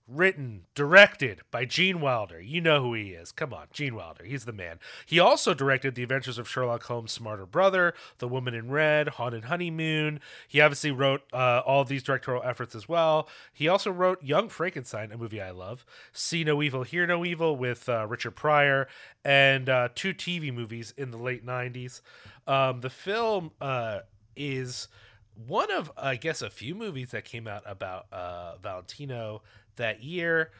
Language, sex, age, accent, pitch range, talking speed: English, male, 30-49, American, 120-150 Hz, 180 wpm